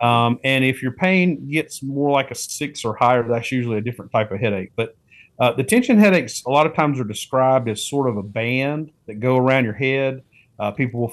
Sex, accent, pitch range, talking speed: male, American, 115-135 Hz, 230 wpm